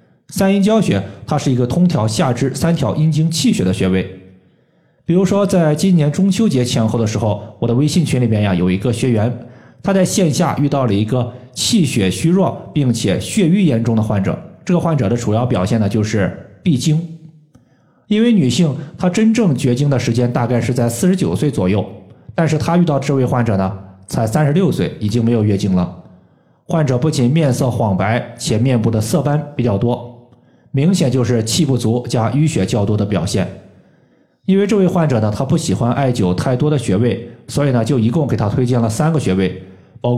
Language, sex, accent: Chinese, male, native